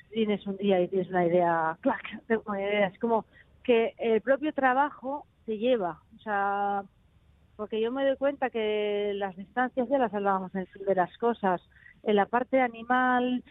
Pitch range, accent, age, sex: 190-240 Hz, Spanish, 30-49, female